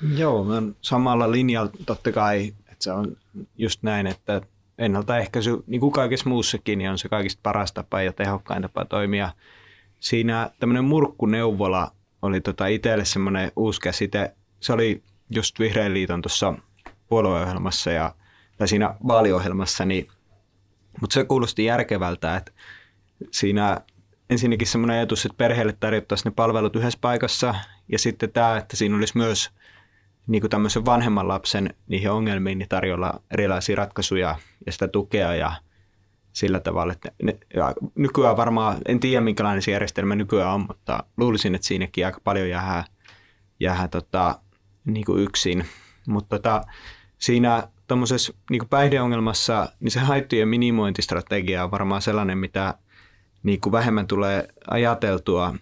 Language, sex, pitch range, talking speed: Finnish, male, 95-115 Hz, 135 wpm